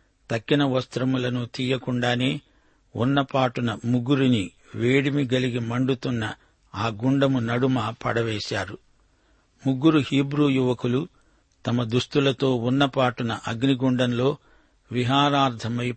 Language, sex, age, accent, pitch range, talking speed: Telugu, male, 60-79, native, 120-135 Hz, 75 wpm